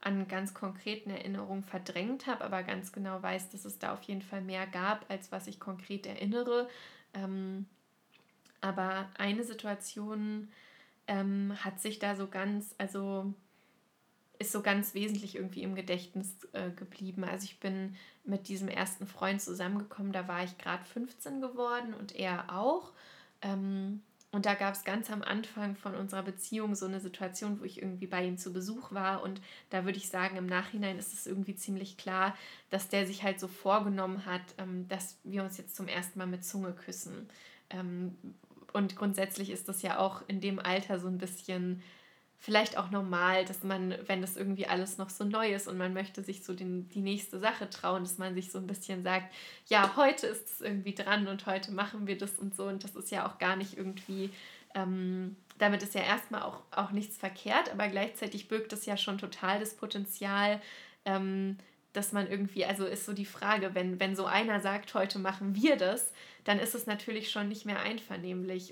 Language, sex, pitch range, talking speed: German, female, 190-205 Hz, 185 wpm